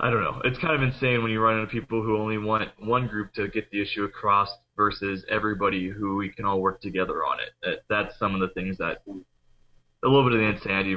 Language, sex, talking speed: English, male, 245 wpm